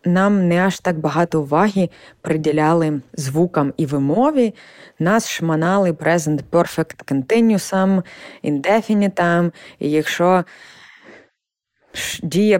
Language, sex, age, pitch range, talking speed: Ukrainian, female, 20-39, 150-190 Hz, 90 wpm